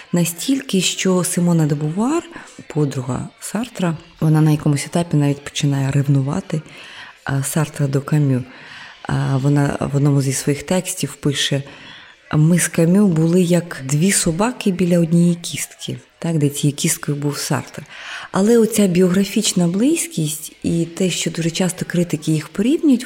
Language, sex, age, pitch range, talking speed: Ukrainian, female, 20-39, 150-200 Hz, 135 wpm